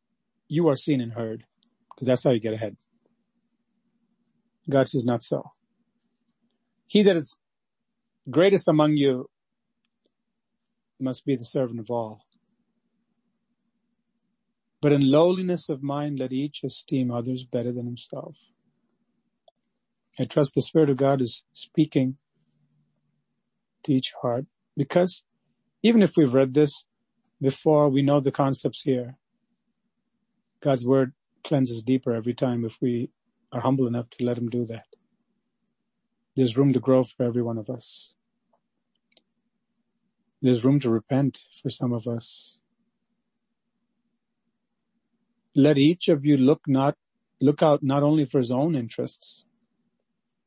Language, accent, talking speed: English, American, 130 wpm